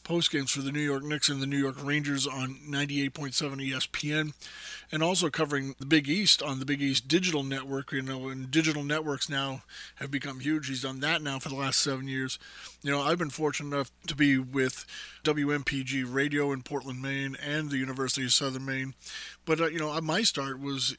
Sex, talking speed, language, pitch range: male, 210 wpm, English, 135-160 Hz